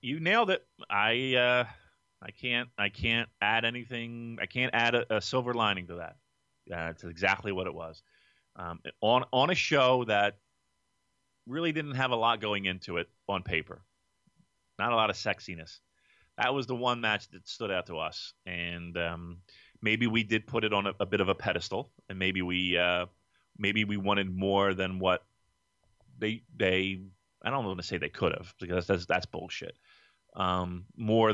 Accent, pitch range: American, 90-125 Hz